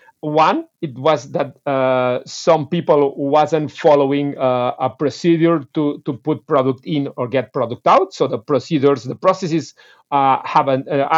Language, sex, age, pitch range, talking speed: English, male, 50-69, 150-215 Hz, 150 wpm